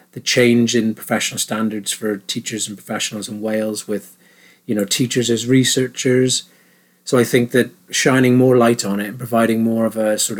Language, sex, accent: English, male, British